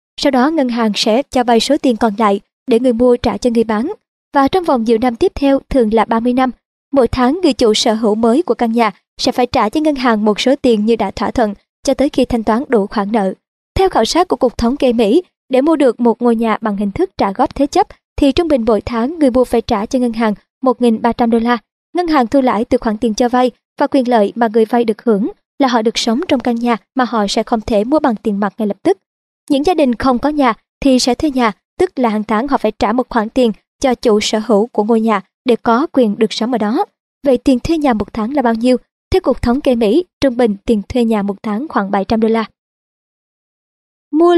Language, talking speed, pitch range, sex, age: Vietnamese, 260 wpm, 225-270 Hz, male, 20-39